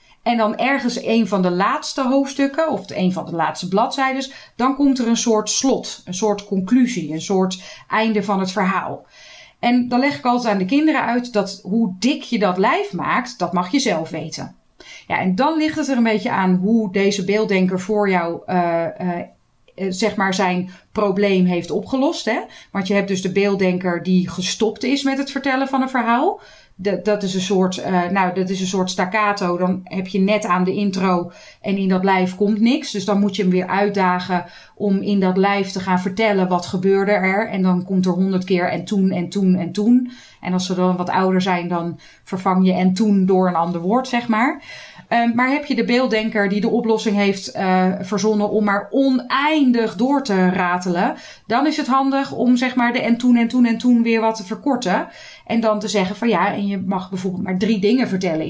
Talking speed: 210 wpm